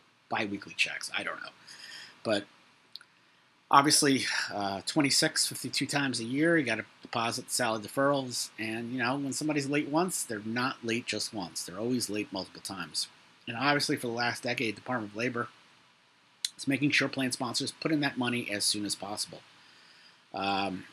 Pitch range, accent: 105-130 Hz, American